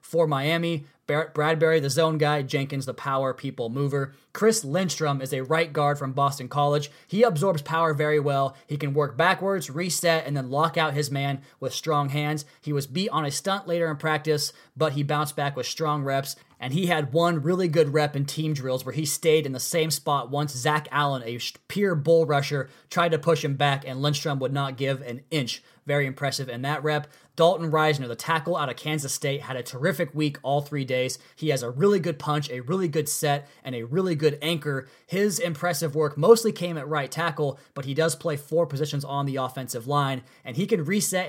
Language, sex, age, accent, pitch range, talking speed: English, male, 20-39, American, 135-165 Hz, 215 wpm